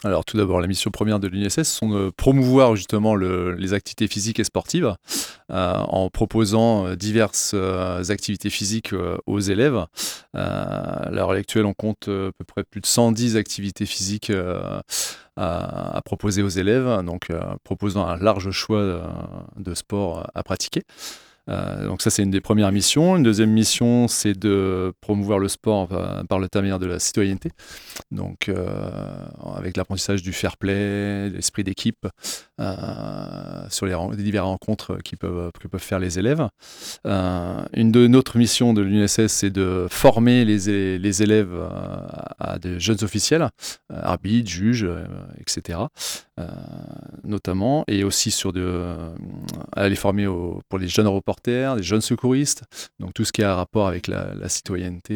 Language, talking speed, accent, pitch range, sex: French, 160 wpm, French, 95-110 Hz, male